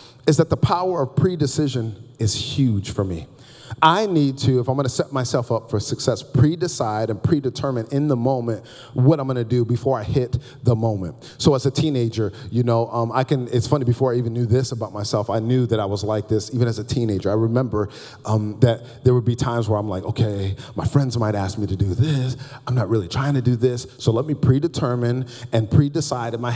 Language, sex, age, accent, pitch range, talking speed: English, male, 40-59, American, 115-140 Hz, 230 wpm